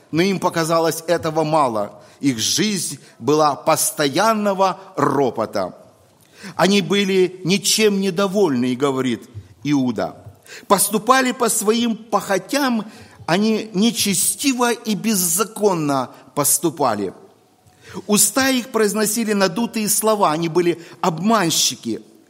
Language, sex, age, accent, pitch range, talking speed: Russian, male, 50-69, native, 160-225 Hz, 90 wpm